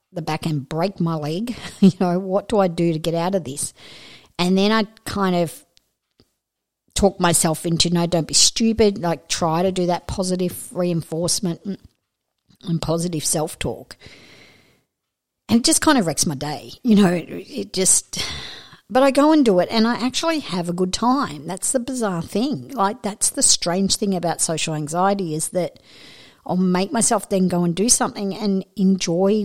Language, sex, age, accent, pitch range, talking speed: English, female, 50-69, Australian, 160-200 Hz, 180 wpm